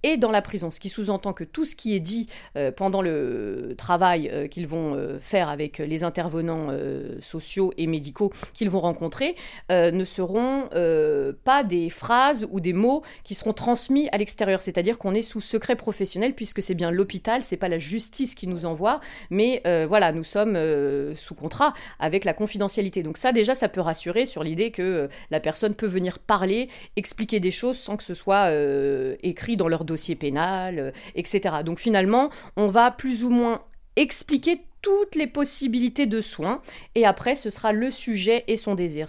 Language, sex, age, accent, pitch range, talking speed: French, female, 40-59, French, 170-225 Hz, 195 wpm